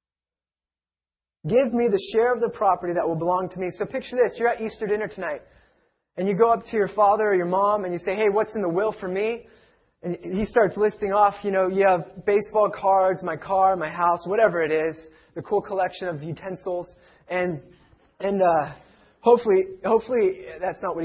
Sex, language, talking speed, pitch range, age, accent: male, English, 200 wpm, 175-225 Hz, 20-39, American